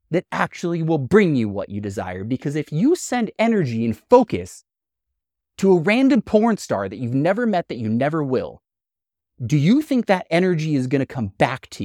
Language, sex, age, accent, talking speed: English, male, 30-49, American, 195 wpm